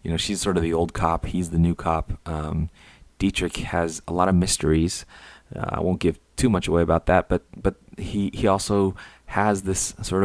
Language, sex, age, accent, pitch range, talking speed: English, male, 30-49, American, 85-100 Hz, 210 wpm